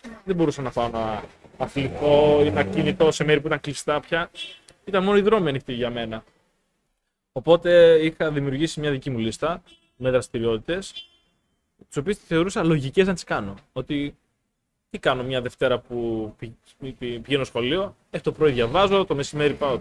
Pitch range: 130-175 Hz